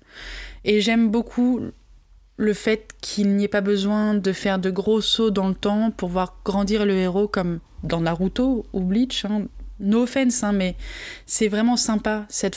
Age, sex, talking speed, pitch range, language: 20-39, female, 170 wpm, 190-220 Hz, French